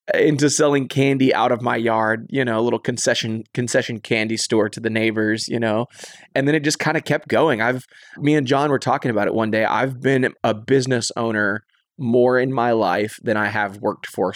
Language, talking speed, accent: English, 215 wpm, American